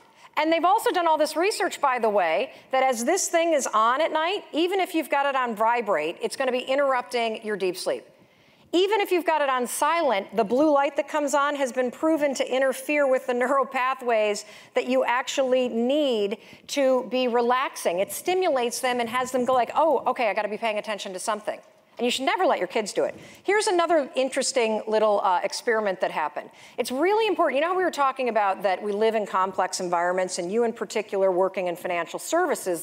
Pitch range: 210-300 Hz